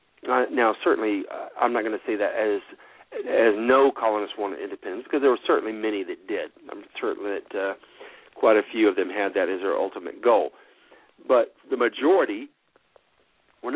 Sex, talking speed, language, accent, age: male, 175 wpm, English, American, 50-69